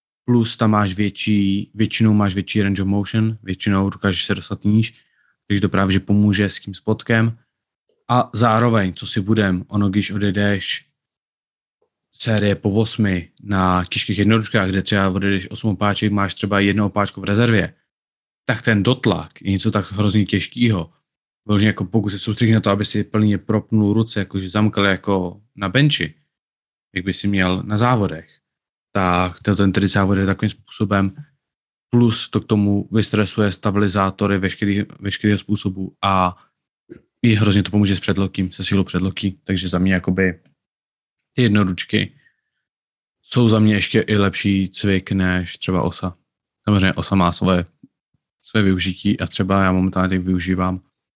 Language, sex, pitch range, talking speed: Czech, male, 95-105 Hz, 145 wpm